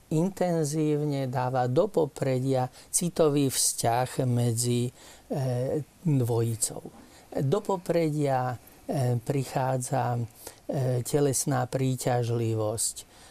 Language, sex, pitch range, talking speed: Slovak, male, 130-165 Hz, 60 wpm